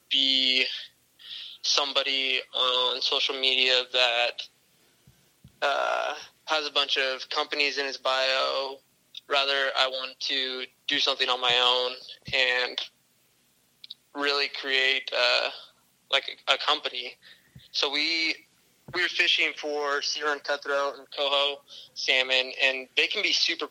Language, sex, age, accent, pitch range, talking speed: English, male, 20-39, American, 125-145 Hz, 120 wpm